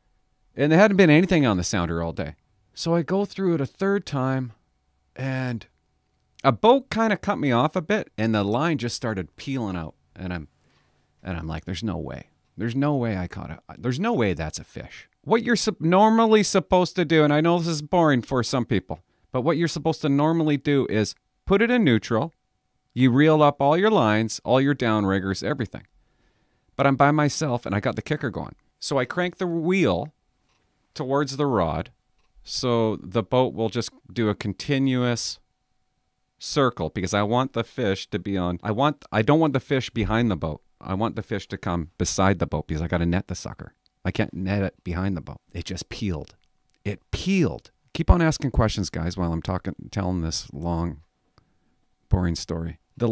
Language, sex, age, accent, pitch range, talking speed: English, male, 40-59, American, 95-150 Hz, 200 wpm